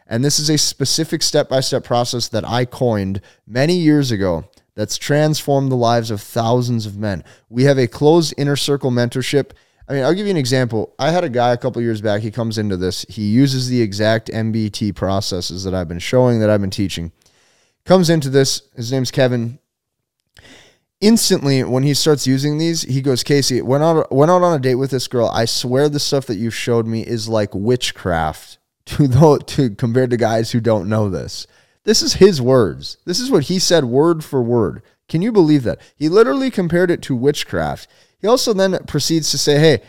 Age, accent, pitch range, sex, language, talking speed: 20-39, American, 110-145 Hz, male, English, 200 wpm